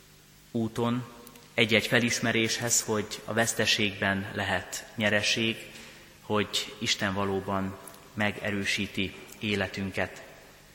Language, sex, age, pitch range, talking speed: Hungarian, male, 30-49, 100-110 Hz, 75 wpm